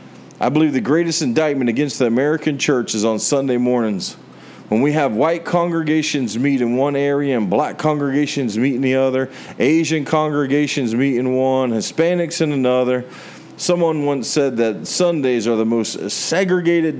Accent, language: American, English